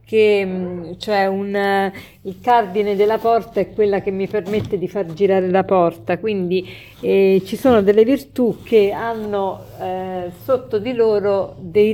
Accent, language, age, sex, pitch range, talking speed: native, Italian, 50-69, female, 195-255 Hz, 155 wpm